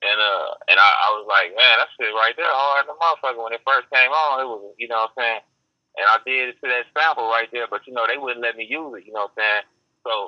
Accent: American